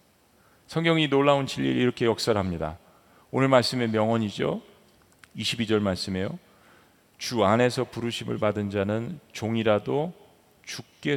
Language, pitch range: Korean, 110-180 Hz